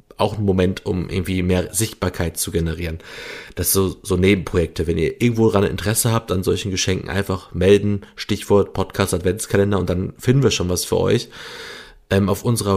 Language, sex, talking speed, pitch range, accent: German, male, 185 wpm, 95-110 Hz, German